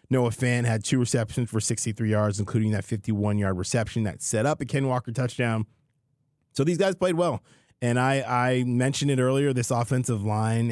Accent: American